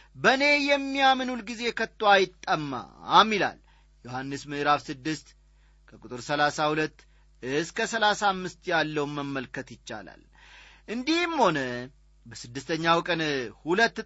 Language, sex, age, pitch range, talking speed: Amharic, male, 40-59, 155-215 Hz, 90 wpm